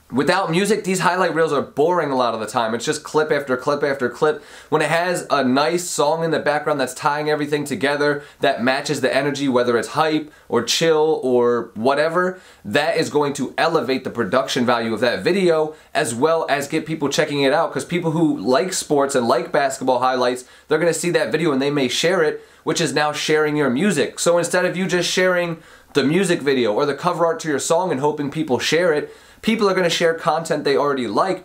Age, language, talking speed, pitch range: 20-39, English, 225 wpm, 135-165 Hz